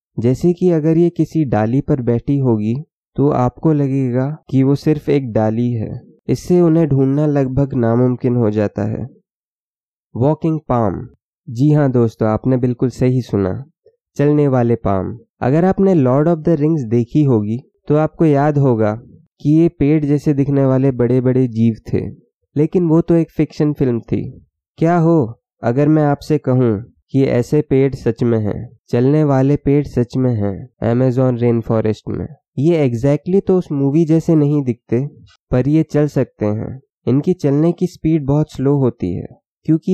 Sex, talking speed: male, 165 wpm